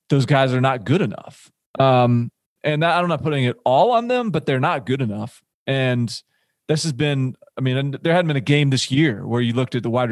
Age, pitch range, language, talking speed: 30-49, 125-150 Hz, English, 230 wpm